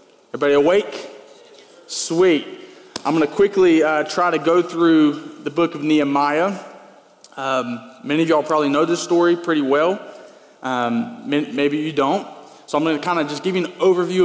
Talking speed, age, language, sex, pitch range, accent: 175 wpm, 20-39, English, male, 140-185 Hz, American